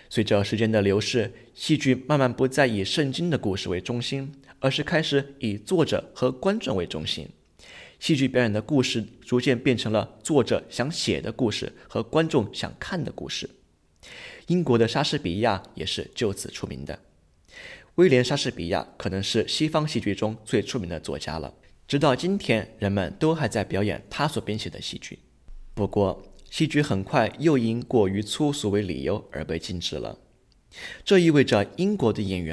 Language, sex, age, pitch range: English, male, 20-39, 100-140 Hz